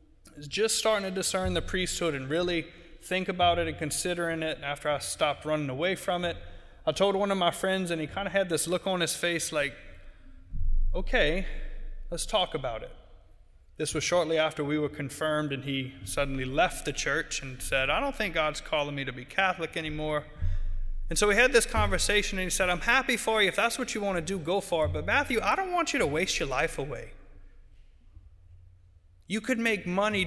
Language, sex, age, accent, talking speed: English, male, 20-39, American, 210 wpm